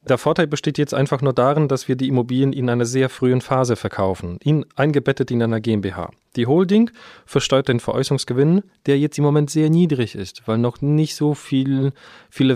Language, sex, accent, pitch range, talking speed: German, male, German, 115-150 Hz, 180 wpm